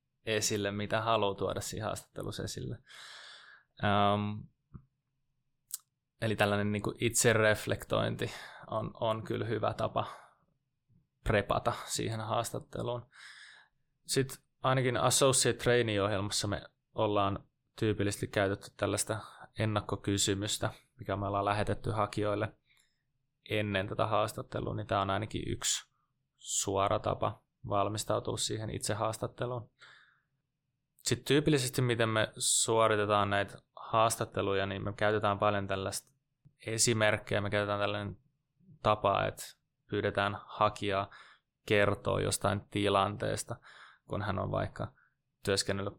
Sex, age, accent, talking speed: male, 20-39, native, 100 wpm